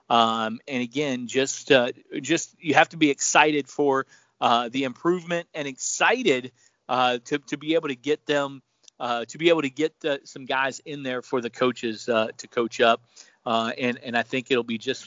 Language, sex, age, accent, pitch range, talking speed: English, male, 40-59, American, 130-165 Hz, 205 wpm